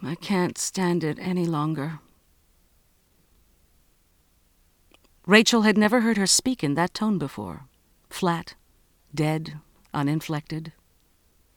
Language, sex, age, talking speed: English, female, 50-69, 100 wpm